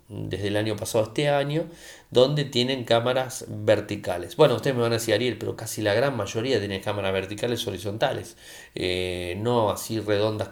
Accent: Argentinian